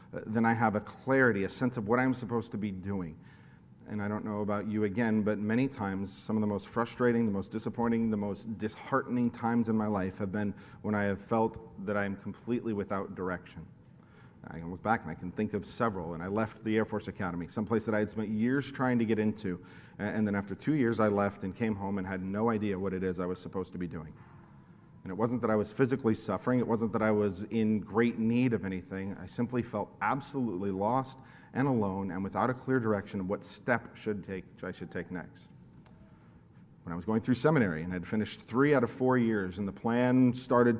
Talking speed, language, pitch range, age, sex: 235 wpm, English, 100-115 Hz, 40-59, male